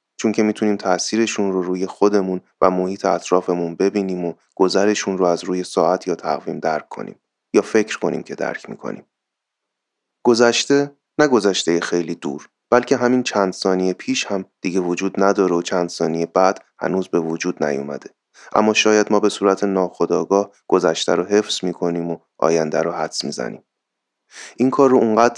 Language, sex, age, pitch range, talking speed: Persian, male, 30-49, 85-105 Hz, 160 wpm